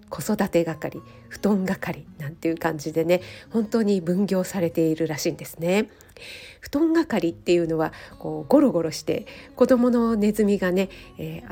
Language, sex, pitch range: Japanese, female, 170-220 Hz